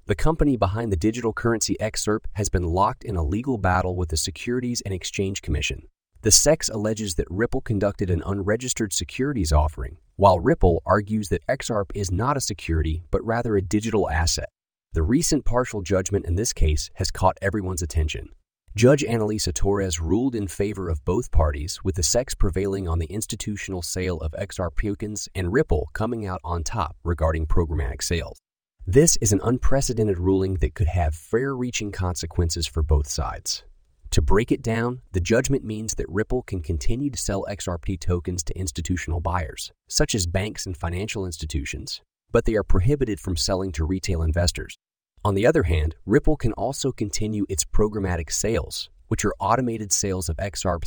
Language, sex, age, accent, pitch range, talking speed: English, male, 30-49, American, 85-110 Hz, 175 wpm